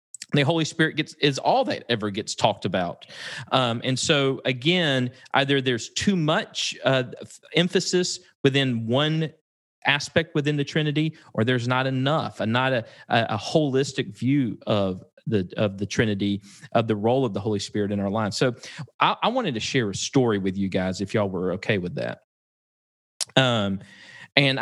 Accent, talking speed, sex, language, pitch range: American, 175 wpm, male, English, 110-140 Hz